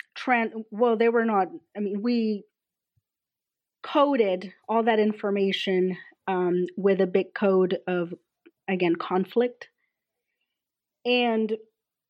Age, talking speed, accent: 30-49, 100 wpm, American